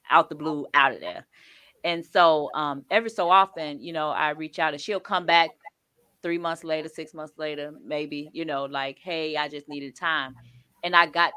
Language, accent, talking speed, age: English, American, 205 wpm, 20-39